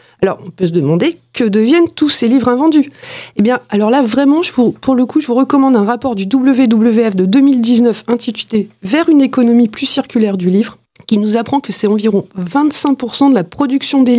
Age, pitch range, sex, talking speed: 40-59, 215-270 Hz, female, 215 wpm